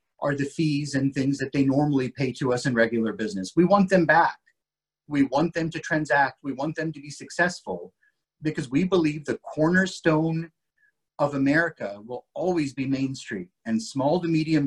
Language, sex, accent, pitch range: English, male, American, 140-185 Hz